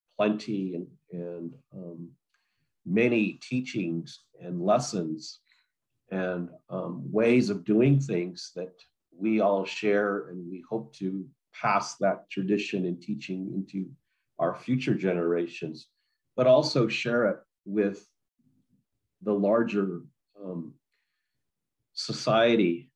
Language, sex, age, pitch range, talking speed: English, male, 50-69, 95-120 Hz, 105 wpm